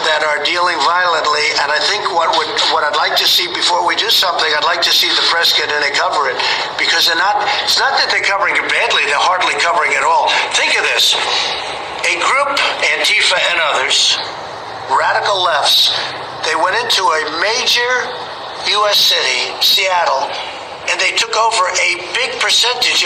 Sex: male